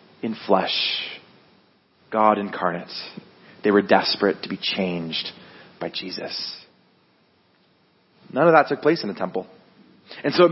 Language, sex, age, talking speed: English, male, 30-49, 130 wpm